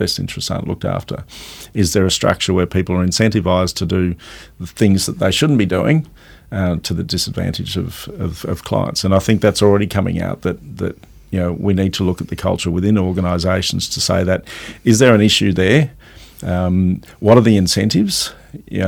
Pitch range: 90-100 Hz